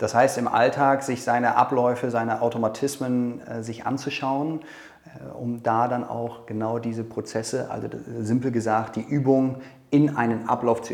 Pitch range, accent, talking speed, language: 115-145 Hz, German, 150 wpm, German